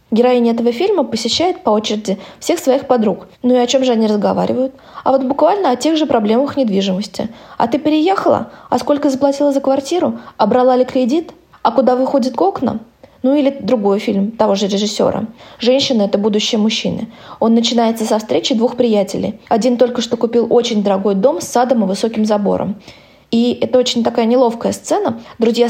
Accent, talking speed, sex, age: native, 180 wpm, female, 20-39